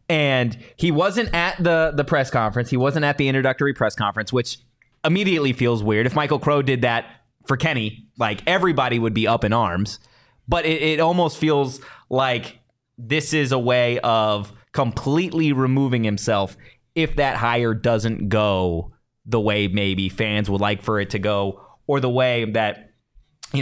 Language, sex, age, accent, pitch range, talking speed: English, male, 20-39, American, 115-160 Hz, 170 wpm